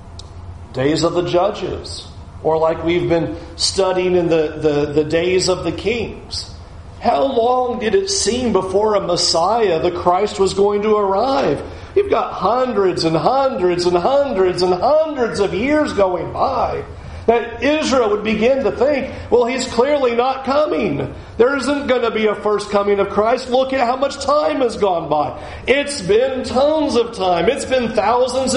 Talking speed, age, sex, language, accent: 170 wpm, 40-59, male, English, American